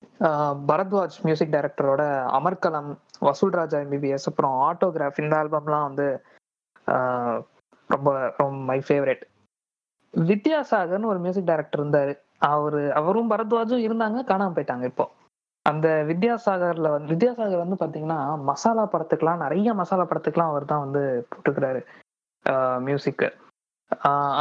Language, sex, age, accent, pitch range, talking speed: Tamil, female, 20-39, native, 145-200 Hz, 105 wpm